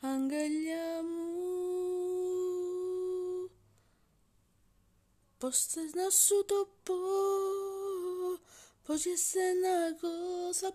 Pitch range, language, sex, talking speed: 280-360 Hz, Greek, female, 75 wpm